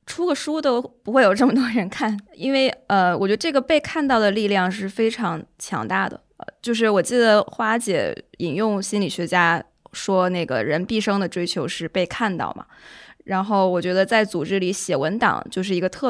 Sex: female